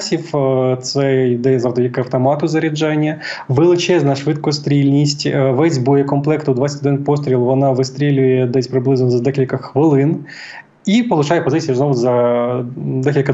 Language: Ukrainian